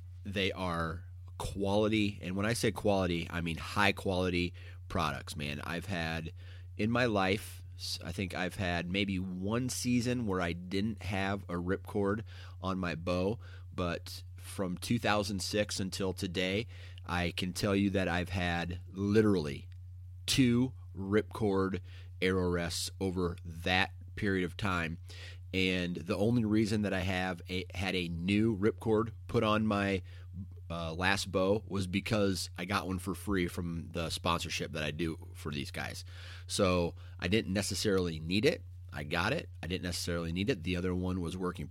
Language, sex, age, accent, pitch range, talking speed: English, male, 30-49, American, 90-100 Hz, 160 wpm